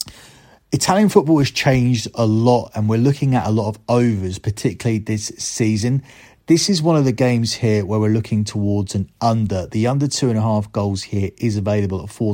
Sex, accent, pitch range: male, British, 105-120 Hz